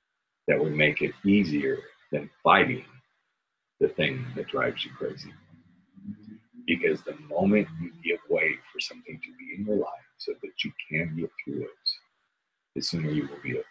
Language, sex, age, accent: English, male, 40-59, American